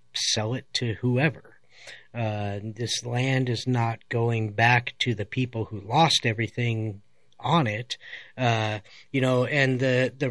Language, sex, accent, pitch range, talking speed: English, male, American, 115-150 Hz, 145 wpm